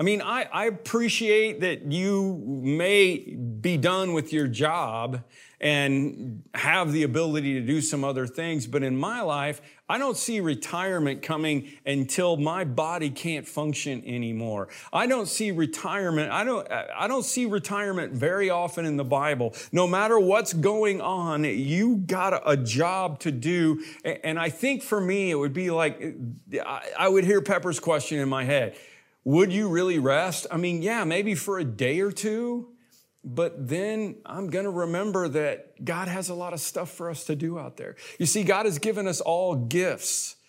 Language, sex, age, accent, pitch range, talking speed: English, male, 40-59, American, 150-195 Hz, 175 wpm